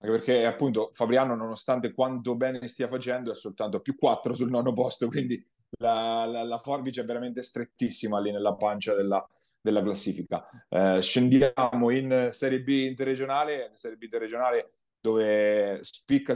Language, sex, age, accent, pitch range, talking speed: Italian, male, 30-49, native, 115-135 Hz, 150 wpm